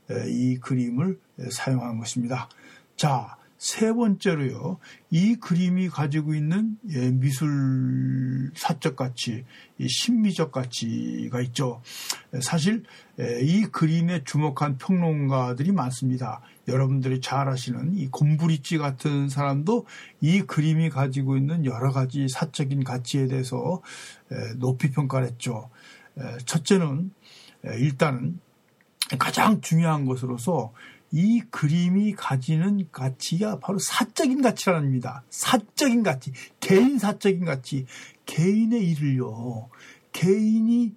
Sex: male